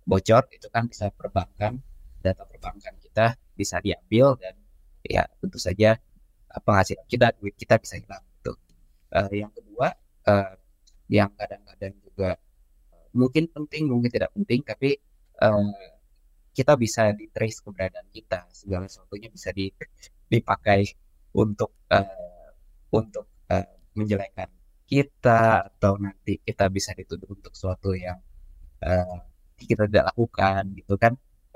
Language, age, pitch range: Indonesian, 20-39, 95-115 Hz